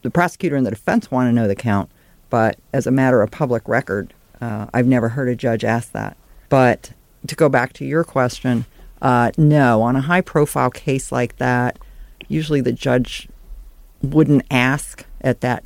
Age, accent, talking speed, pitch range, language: 50-69, American, 180 wpm, 120-140 Hz, English